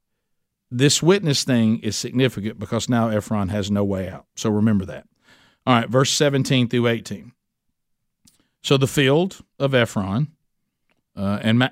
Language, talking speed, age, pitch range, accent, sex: English, 145 wpm, 50-69, 105-135 Hz, American, male